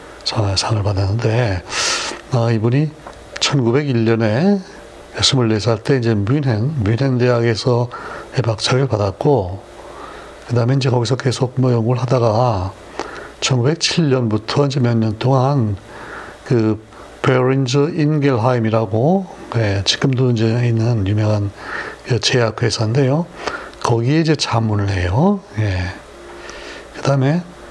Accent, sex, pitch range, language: native, male, 110-140 Hz, Korean